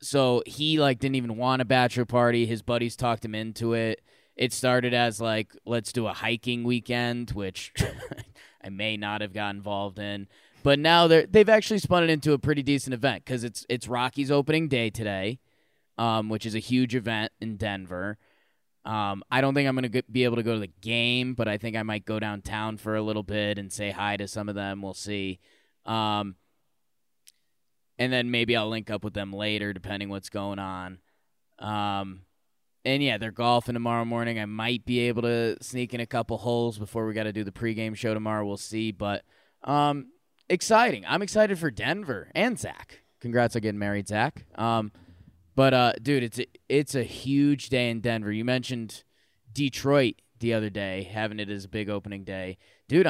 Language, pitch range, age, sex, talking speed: English, 105-125 Hz, 20-39, male, 200 wpm